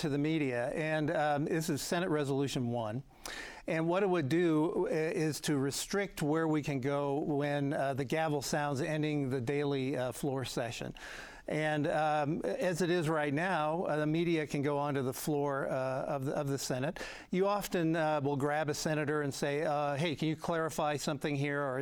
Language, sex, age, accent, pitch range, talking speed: English, male, 60-79, American, 140-160 Hz, 195 wpm